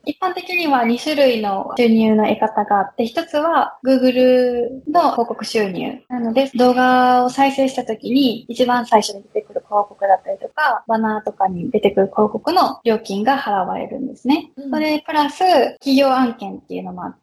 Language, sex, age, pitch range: Japanese, female, 20-39, 215-275 Hz